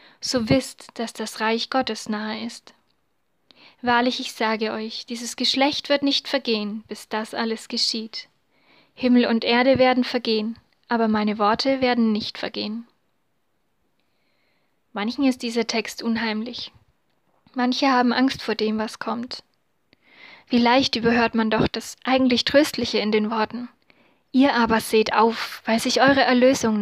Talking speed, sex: 140 wpm, female